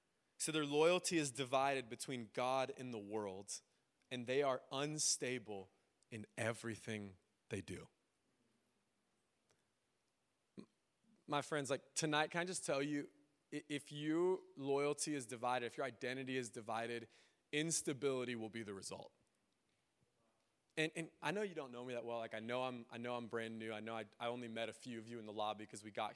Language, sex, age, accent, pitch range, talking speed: English, male, 20-39, American, 115-150 Hz, 180 wpm